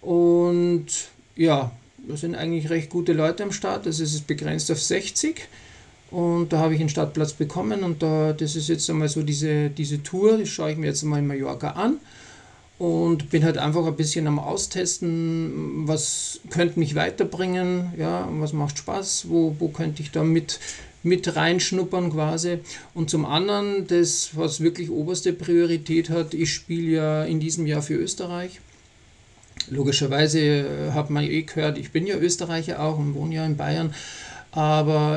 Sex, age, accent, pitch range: male, 50-69, German, 150-170 Hz